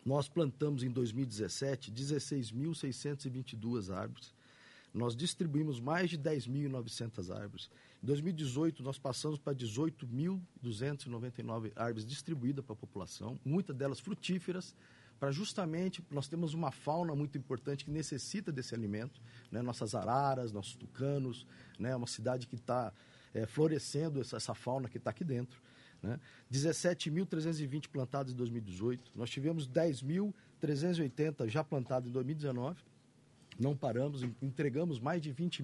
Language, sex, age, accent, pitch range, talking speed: Portuguese, male, 50-69, Brazilian, 120-155 Hz, 130 wpm